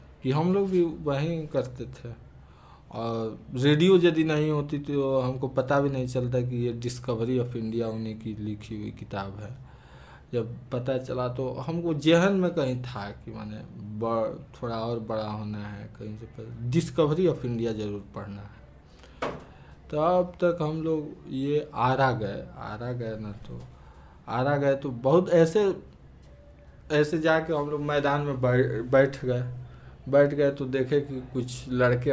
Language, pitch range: Hindi, 110-145 Hz